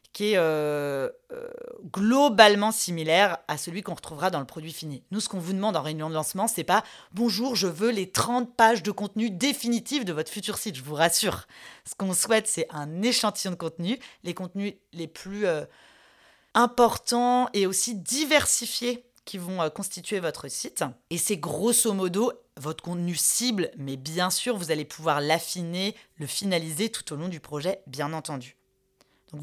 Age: 30-49